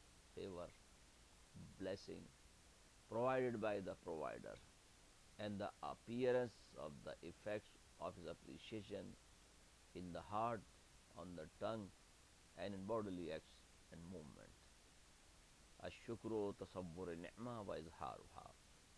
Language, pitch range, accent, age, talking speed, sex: English, 90-120 Hz, Indian, 60-79, 90 wpm, male